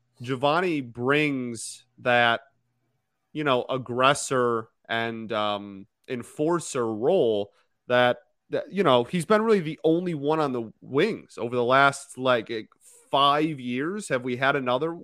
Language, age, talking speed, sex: English, 30-49, 135 wpm, male